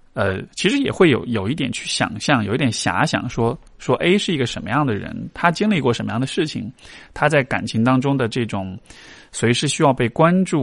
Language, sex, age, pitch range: Chinese, male, 20-39, 105-140 Hz